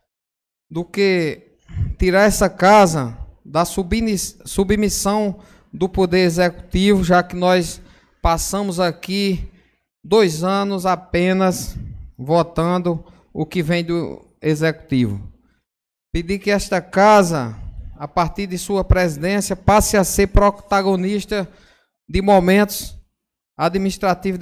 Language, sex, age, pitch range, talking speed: Portuguese, male, 20-39, 170-200 Hz, 100 wpm